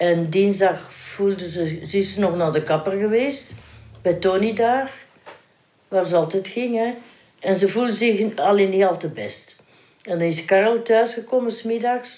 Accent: Dutch